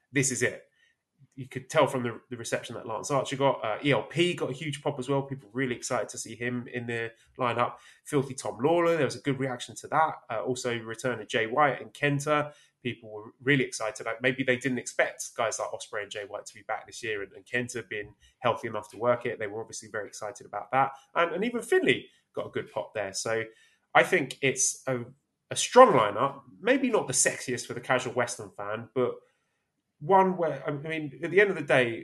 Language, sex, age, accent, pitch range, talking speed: English, male, 20-39, British, 115-140 Hz, 230 wpm